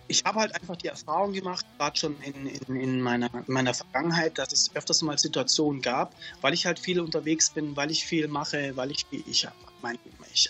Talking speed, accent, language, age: 215 wpm, German, German, 30-49